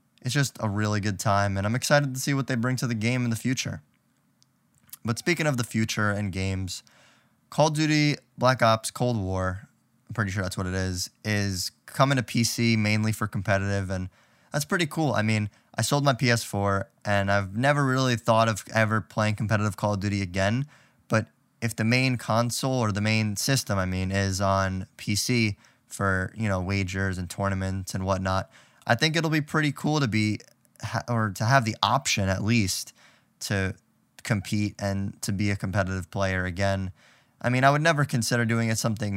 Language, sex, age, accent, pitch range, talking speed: English, male, 20-39, American, 100-125 Hz, 195 wpm